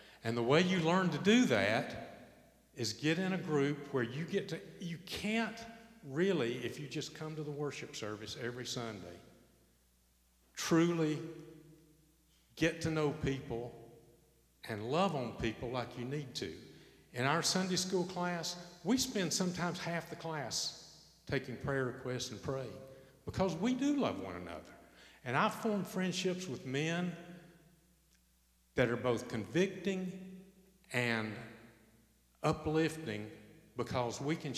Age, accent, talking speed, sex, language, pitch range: 50-69, American, 140 wpm, male, English, 120-170 Hz